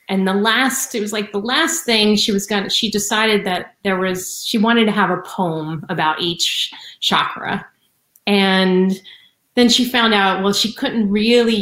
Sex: female